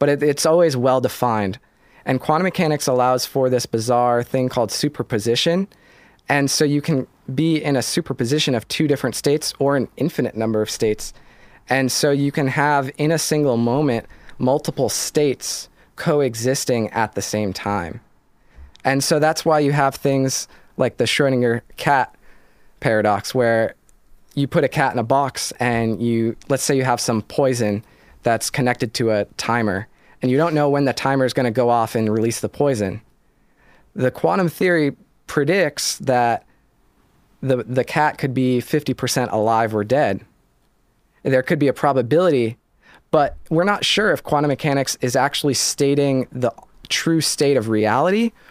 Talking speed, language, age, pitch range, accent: 160 wpm, English, 20-39, 115-145 Hz, American